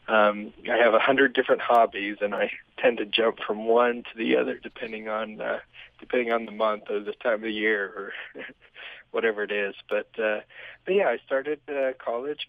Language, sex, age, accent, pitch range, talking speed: English, male, 40-59, American, 110-135 Hz, 200 wpm